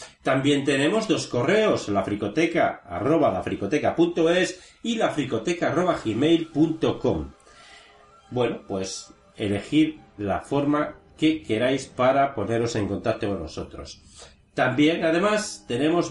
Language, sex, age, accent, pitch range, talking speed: Spanish, male, 40-59, Spanish, 105-165 Hz, 95 wpm